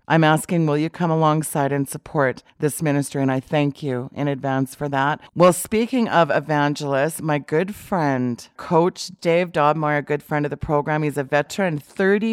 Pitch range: 140-165 Hz